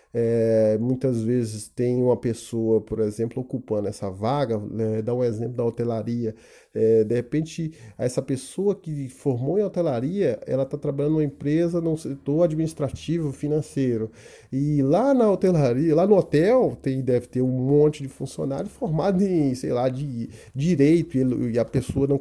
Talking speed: 155 wpm